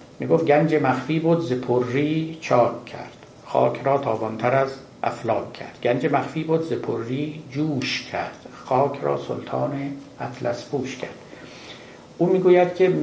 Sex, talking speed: male, 135 wpm